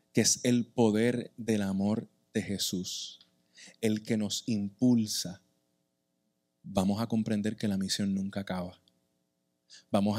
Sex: male